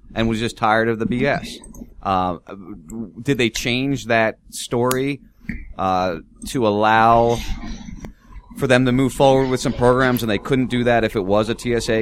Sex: male